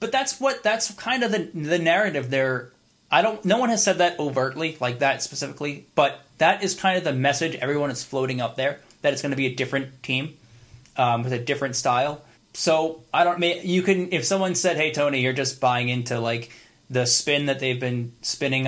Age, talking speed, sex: 20-39, 210 wpm, male